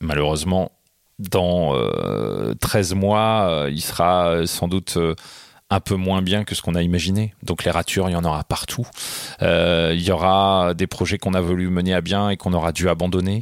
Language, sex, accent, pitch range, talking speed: French, male, French, 90-110 Hz, 200 wpm